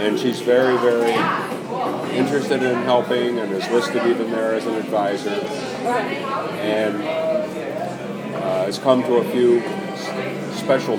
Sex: male